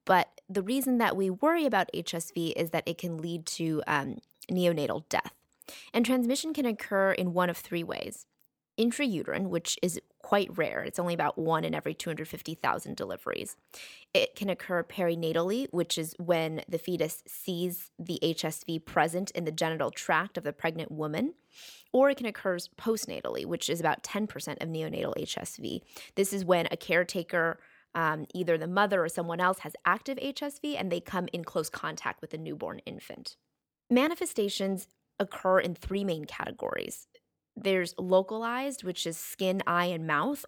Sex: female